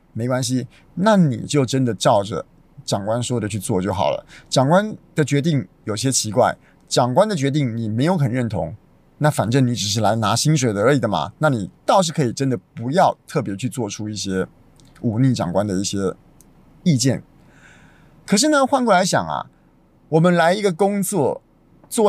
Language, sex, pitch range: Chinese, male, 120-175 Hz